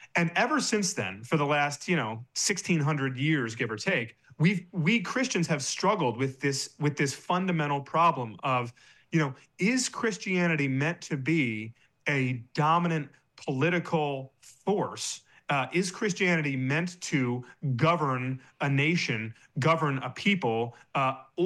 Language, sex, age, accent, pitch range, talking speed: English, male, 30-49, American, 135-175 Hz, 135 wpm